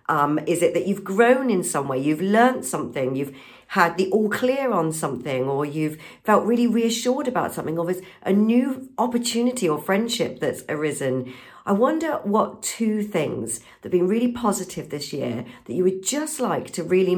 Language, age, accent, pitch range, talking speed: English, 50-69, British, 150-210 Hz, 190 wpm